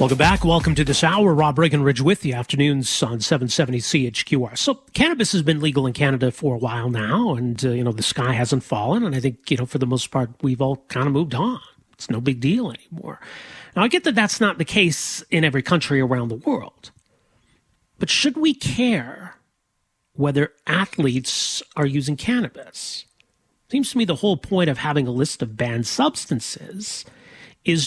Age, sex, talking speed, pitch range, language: 40-59, male, 195 wpm, 130-170 Hz, English